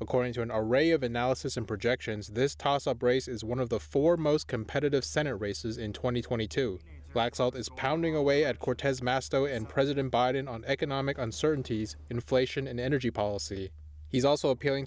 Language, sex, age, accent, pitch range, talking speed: English, male, 20-39, American, 115-140 Hz, 170 wpm